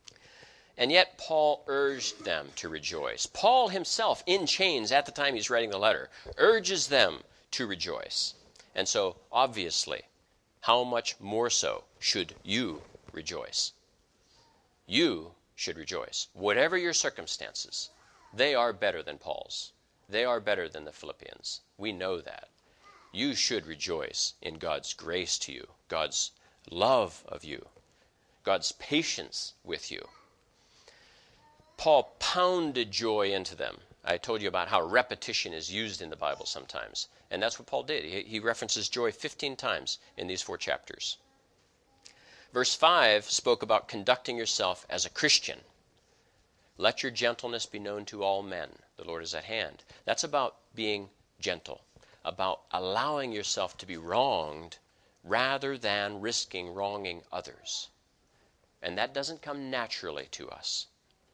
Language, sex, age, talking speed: English, male, 40-59, 140 wpm